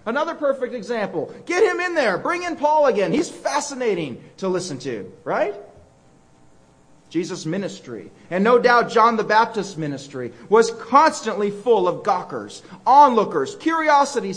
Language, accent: English, American